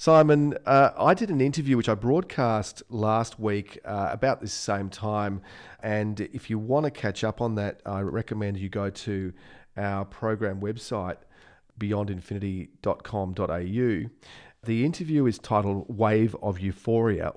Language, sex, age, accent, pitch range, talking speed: English, male, 40-59, Australian, 100-115 Hz, 140 wpm